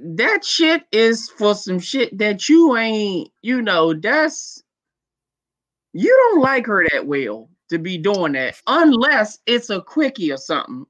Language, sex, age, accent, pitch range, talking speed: English, male, 20-39, American, 175-250 Hz, 155 wpm